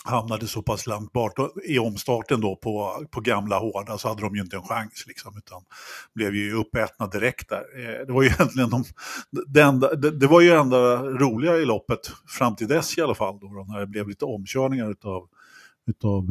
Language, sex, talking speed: Swedish, male, 200 wpm